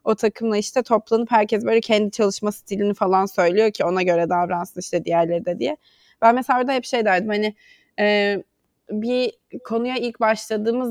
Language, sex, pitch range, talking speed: English, female, 190-235 Hz, 170 wpm